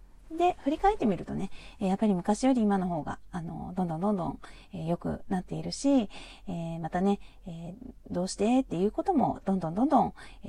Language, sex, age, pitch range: Japanese, female, 40-59, 175-235 Hz